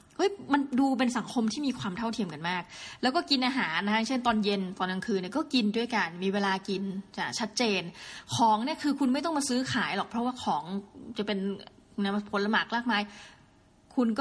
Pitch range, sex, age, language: 190-240 Hz, female, 20-39, Thai